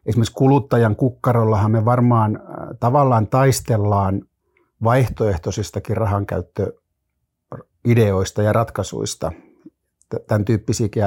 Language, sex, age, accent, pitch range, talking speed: Finnish, male, 60-79, native, 100-120 Hz, 70 wpm